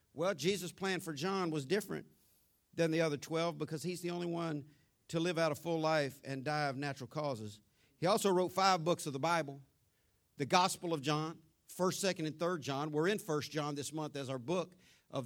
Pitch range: 140-180 Hz